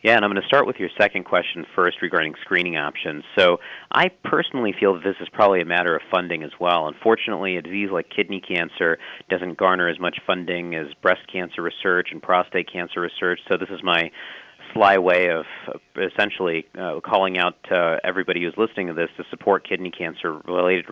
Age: 40-59